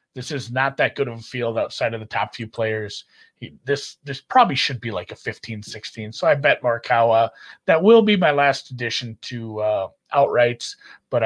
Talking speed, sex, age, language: 200 wpm, male, 30-49, English